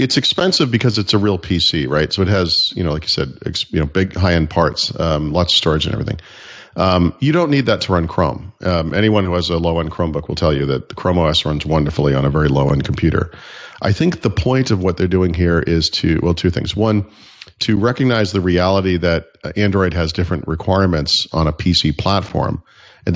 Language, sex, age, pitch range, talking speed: English, male, 40-59, 80-100 Hz, 225 wpm